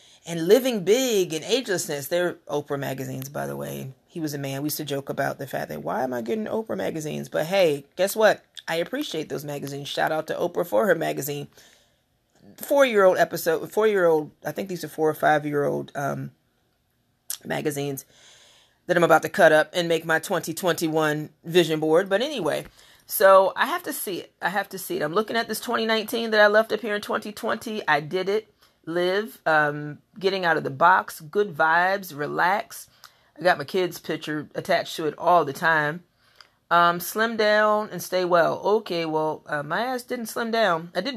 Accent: American